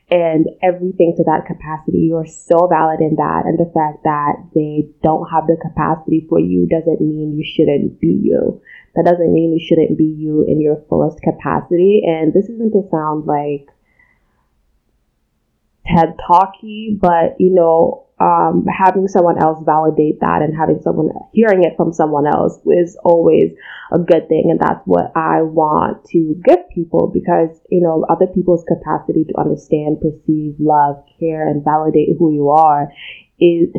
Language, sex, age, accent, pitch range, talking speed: English, female, 20-39, American, 155-175 Hz, 165 wpm